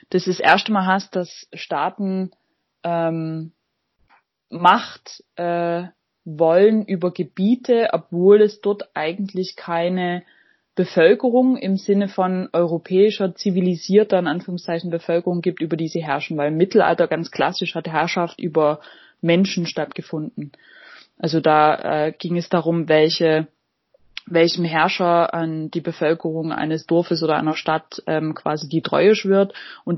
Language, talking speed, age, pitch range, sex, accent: German, 130 wpm, 20-39, 160-185 Hz, female, German